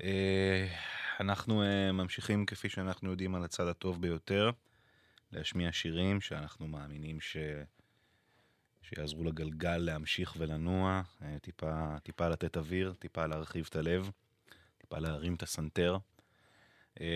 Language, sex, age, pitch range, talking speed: English, male, 20-39, 85-110 Hz, 120 wpm